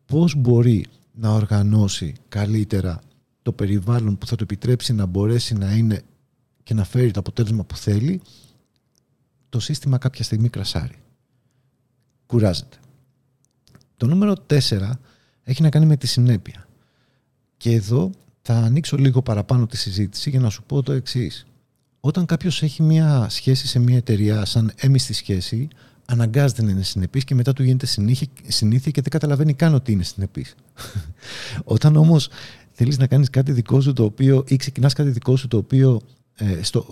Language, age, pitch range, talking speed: Greek, 50-69, 110-135 Hz, 160 wpm